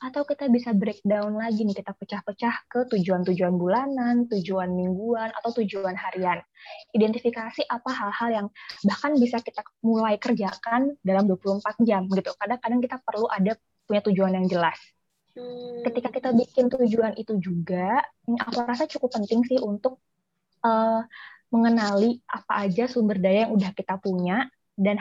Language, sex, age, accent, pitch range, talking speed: Indonesian, female, 20-39, native, 200-245 Hz, 140 wpm